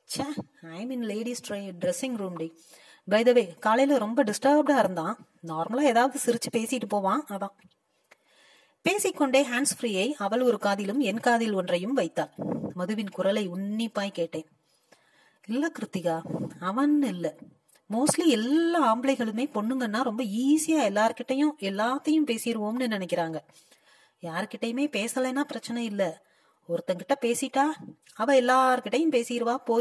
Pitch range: 200-275 Hz